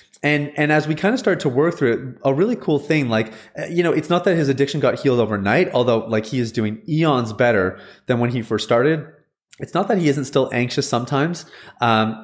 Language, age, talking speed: English, 30-49, 230 wpm